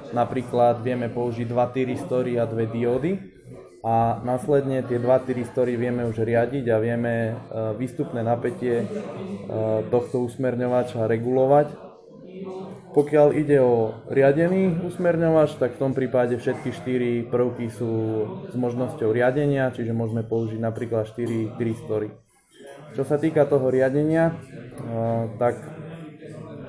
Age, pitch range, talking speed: 20-39, 120-135 Hz, 115 wpm